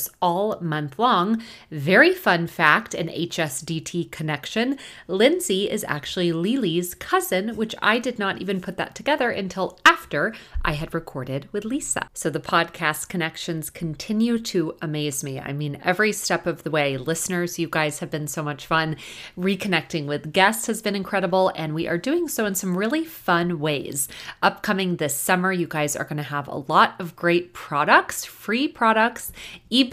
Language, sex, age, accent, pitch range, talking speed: English, female, 30-49, American, 155-195 Hz, 170 wpm